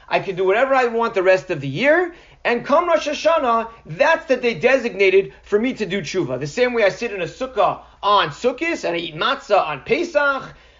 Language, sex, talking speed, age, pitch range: English, male, 220 wpm, 40-59, 195-260 Hz